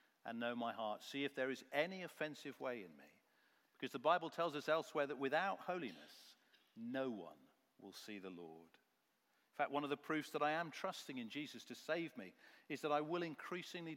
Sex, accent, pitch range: male, British, 110-150 Hz